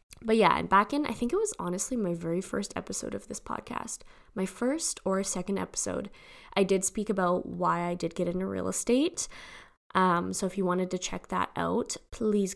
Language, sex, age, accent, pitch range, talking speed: English, female, 10-29, American, 175-230 Hz, 200 wpm